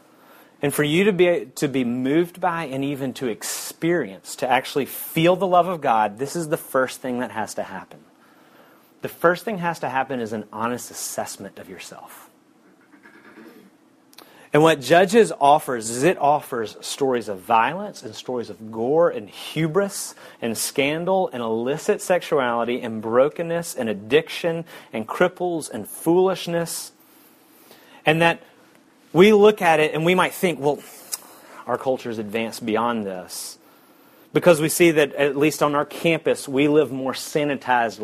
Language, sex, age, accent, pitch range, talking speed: English, male, 30-49, American, 125-170 Hz, 160 wpm